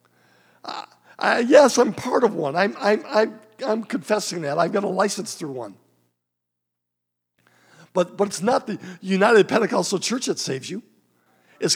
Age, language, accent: 50-69, English, American